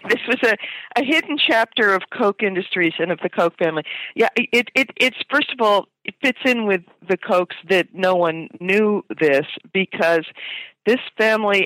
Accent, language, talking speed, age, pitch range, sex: American, English, 180 wpm, 50-69, 150-190 Hz, female